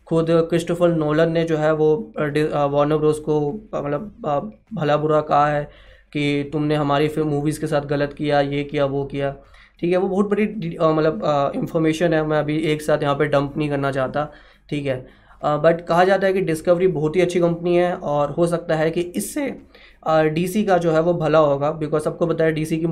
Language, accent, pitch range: Hindi, native, 150-180 Hz